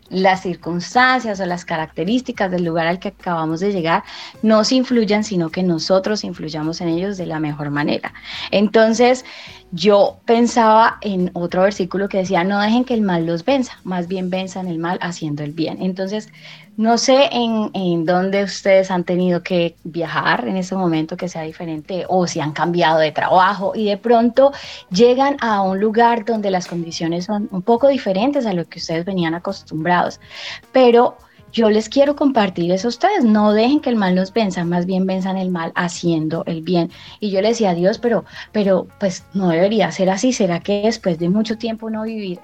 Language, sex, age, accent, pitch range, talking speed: Spanish, female, 20-39, Colombian, 175-220 Hz, 190 wpm